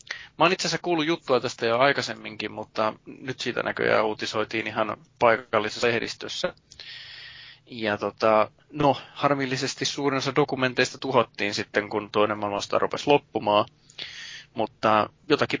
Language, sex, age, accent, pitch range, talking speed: Finnish, male, 30-49, native, 110-145 Hz, 130 wpm